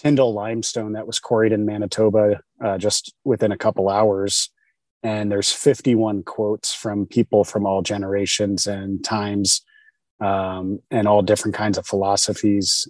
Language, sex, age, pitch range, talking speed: English, male, 30-49, 100-110 Hz, 145 wpm